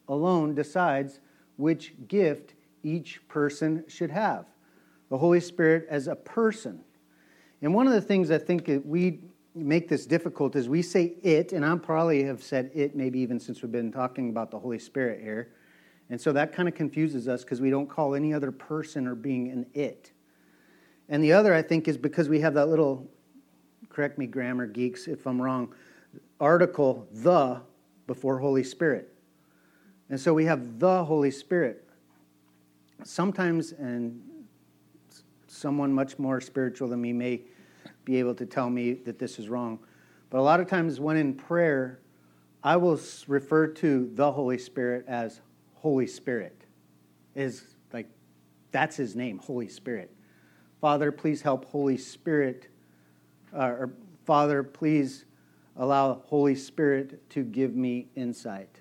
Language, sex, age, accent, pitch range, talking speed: English, male, 40-59, American, 120-155 Hz, 155 wpm